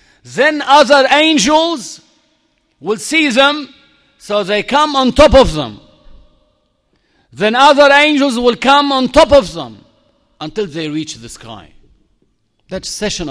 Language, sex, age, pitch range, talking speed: Arabic, male, 50-69, 145-215 Hz, 130 wpm